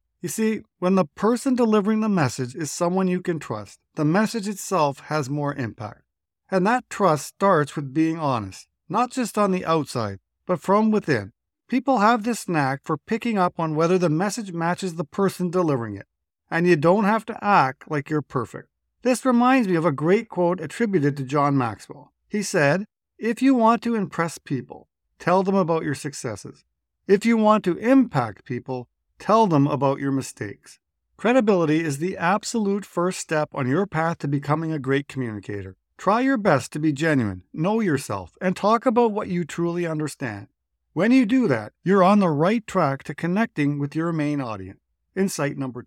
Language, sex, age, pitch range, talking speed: English, male, 50-69, 140-210 Hz, 185 wpm